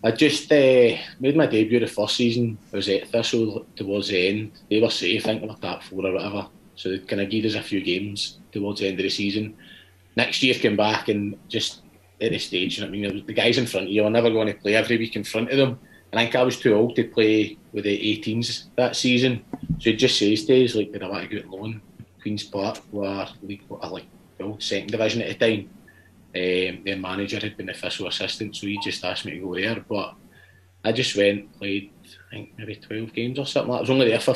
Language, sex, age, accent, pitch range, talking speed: English, male, 30-49, British, 95-115 Hz, 255 wpm